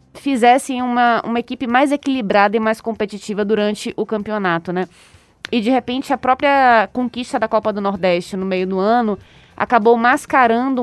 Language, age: Portuguese, 20-39